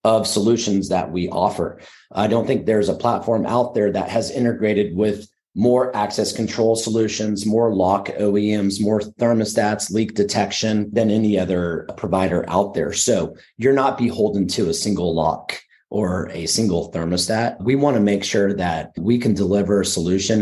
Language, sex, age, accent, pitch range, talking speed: English, male, 30-49, American, 95-115 Hz, 170 wpm